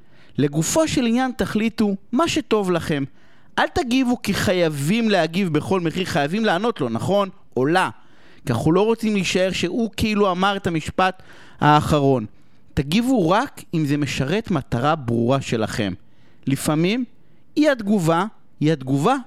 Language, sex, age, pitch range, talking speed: Hebrew, male, 30-49, 140-225 Hz, 140 wpm